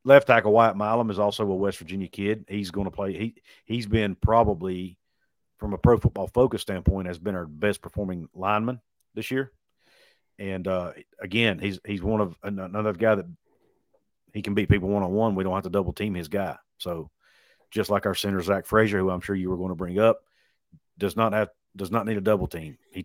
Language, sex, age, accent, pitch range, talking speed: English, male, 50-69, American, 95-110 Hz, 210 wpm